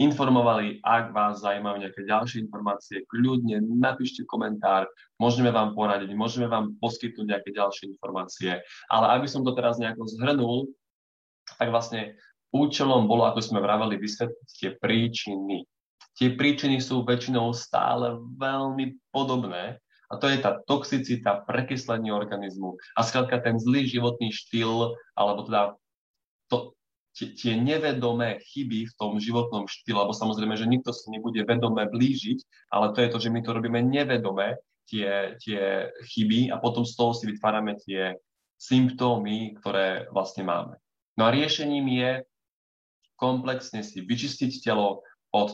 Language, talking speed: Slovak, 140 wpm